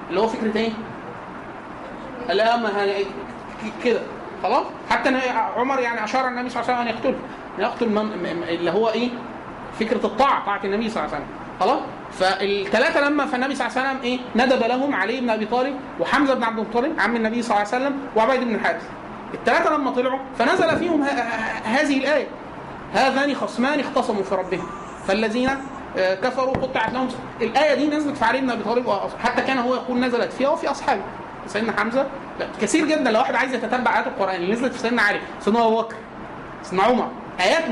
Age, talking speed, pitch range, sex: 30-49, 195 wpm, 220-275 Hz, male